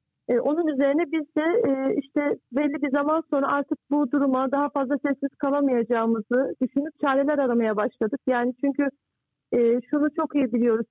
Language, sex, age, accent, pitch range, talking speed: Turkish, female, 50-69, native, 255-295 Hz, 145 wpm